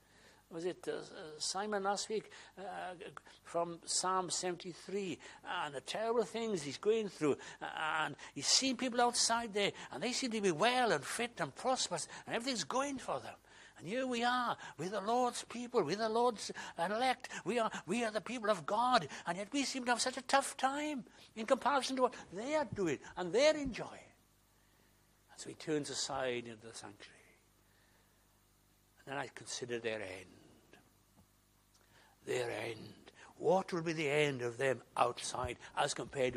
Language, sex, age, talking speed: English, male, 60-79, 170 wpm